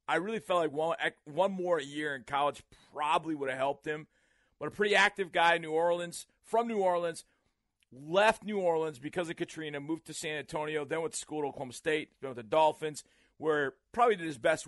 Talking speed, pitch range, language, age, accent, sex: 215 wpm, 145-190 Hz, English, 40-59, American, male